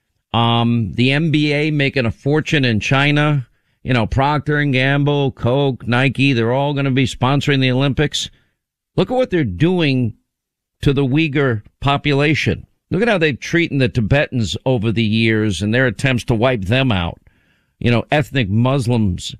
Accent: American